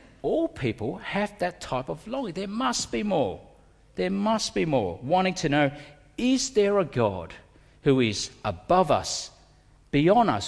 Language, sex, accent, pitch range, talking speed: English, male, Australian, 115-175 Hz, 160 wpm